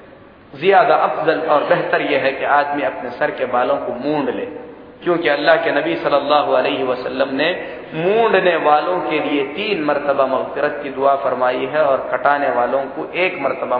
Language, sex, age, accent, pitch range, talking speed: Hindi, male, 40-59, native, 145-185 Hz, 160 wpm